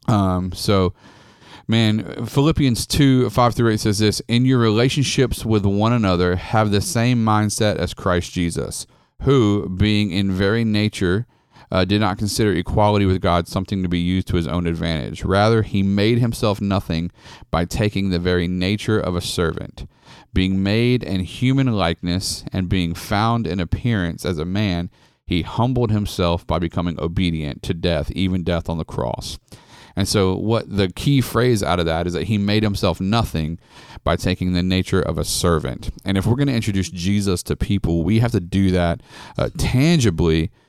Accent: American